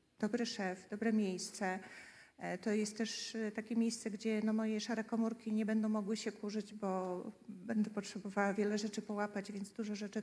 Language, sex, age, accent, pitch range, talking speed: Polish, female, 40-59, native, 210-230 Hz, 165 wpm